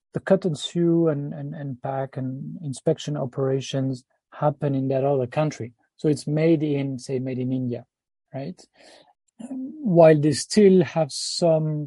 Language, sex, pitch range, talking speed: English, male, 135-160 Hz, 150 wpm